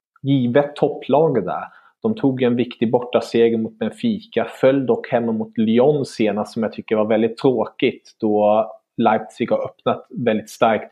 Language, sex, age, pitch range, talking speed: English, male, 30-49, 105-120 Hz, 155 wpm